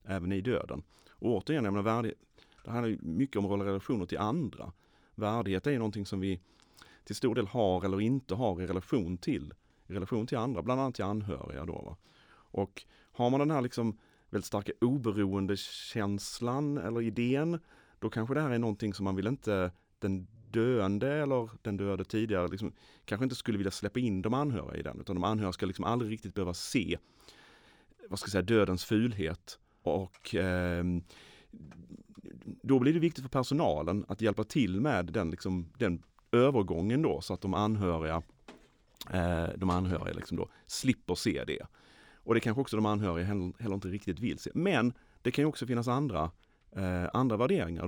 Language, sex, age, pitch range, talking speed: Swedish, male, 30-49, 90-120 Hz, 180 wpm